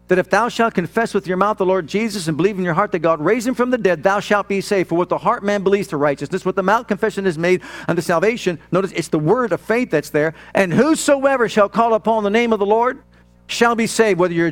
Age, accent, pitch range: 50-69, American, 150-225 Hz